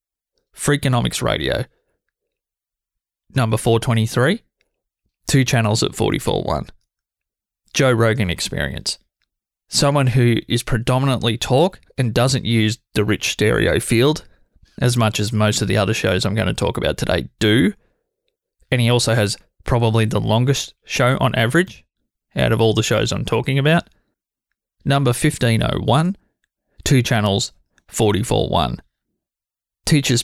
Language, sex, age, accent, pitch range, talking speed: English, male, 20-39, Australian, 110-130 Hz, 125 wpm